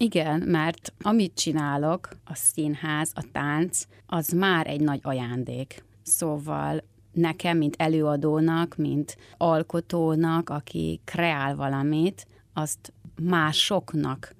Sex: female